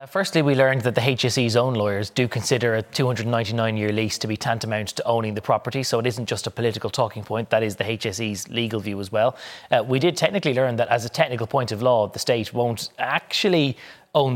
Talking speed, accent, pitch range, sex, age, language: 220 wpm, Irish, 110-130 Hz, male, 30-49, English